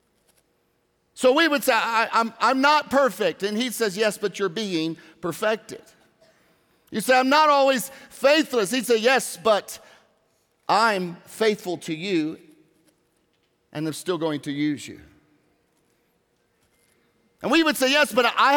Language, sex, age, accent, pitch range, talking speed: English, male, 50-69, American, 175-245 Hz, 145 wpm